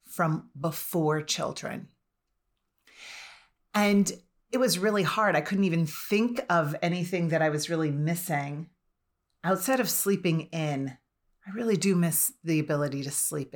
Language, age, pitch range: English, 40-59, 155-195 Hz